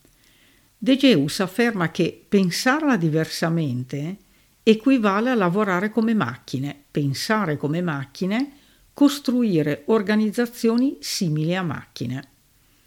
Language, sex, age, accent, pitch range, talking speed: Italian, female, 60-79, native, 140-230 Hz, 90 wpm